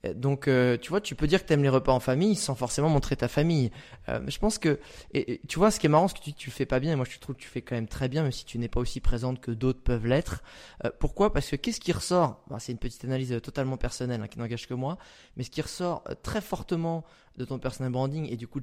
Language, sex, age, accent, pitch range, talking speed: French, male, 20-39, French, 130-165 Hz, 305 wpm